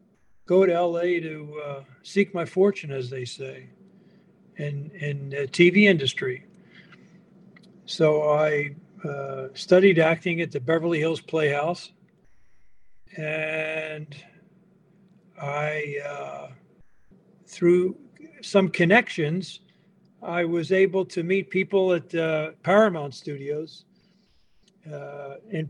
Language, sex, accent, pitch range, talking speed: English, male, American, 150-190 Hz, 105 wpm